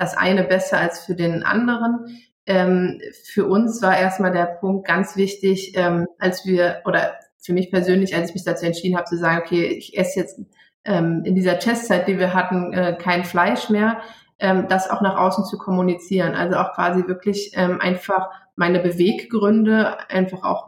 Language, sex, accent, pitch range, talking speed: German, female, German, 180-205 Hz, 185 wpm